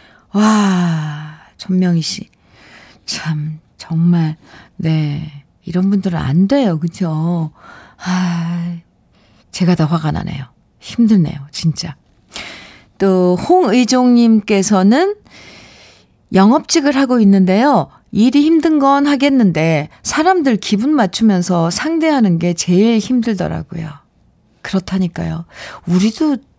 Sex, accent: female, native